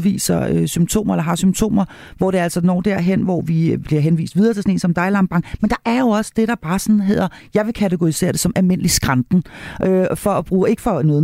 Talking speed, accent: 245 wpm, native